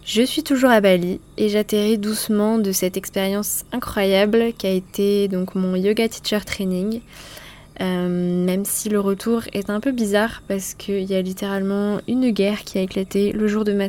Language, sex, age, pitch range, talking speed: French, female, 20-39, 185-205 Hz, 185 wpm